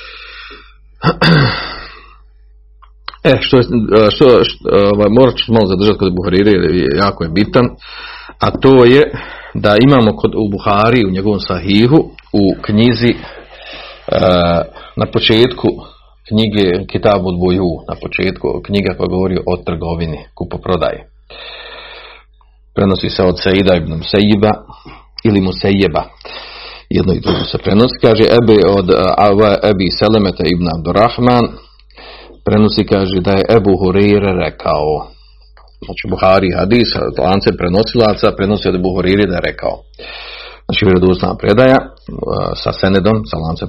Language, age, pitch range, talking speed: Croatian, 40-59, 95-115 Hz, 125 wpm